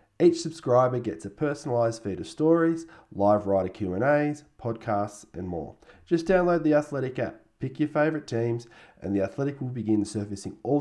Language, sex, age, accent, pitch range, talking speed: English, male, 20-39, Australian, 110-155 Hz, 180 wpm